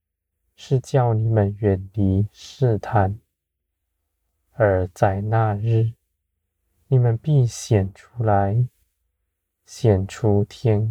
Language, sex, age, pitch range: Chinese, male, 20-39, 85-115 Hz